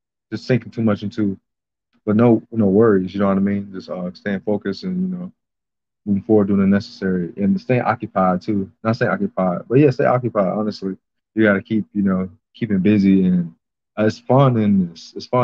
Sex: male